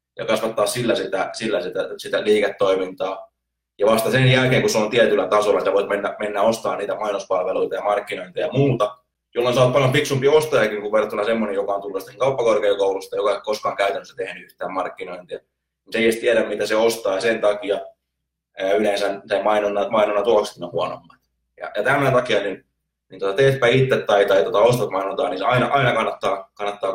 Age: 20-39